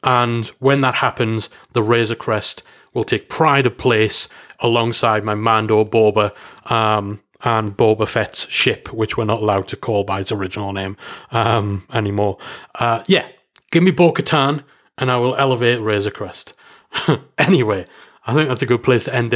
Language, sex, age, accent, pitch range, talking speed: English, male, 30-49, British, 120-155 Hz, 160 wpm